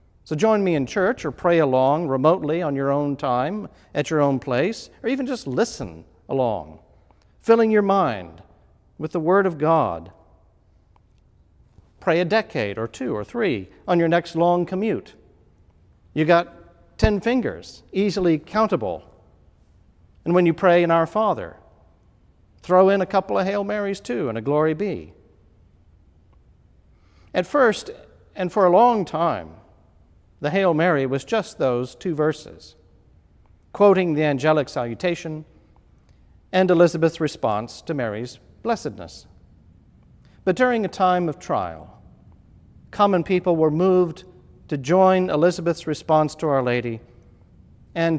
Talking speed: 135 wpm